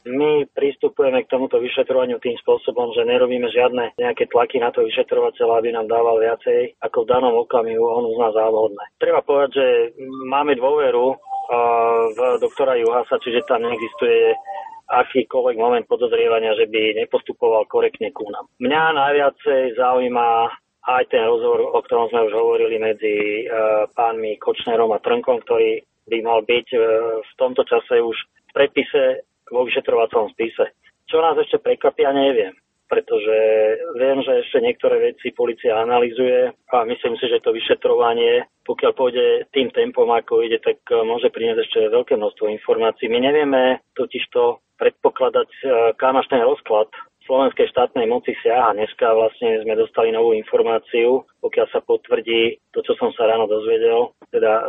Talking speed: 150 wpm